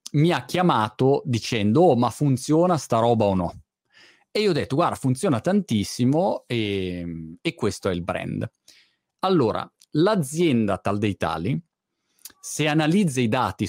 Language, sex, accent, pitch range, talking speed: Italian, male, native, 110-155 Hz, 145 wpm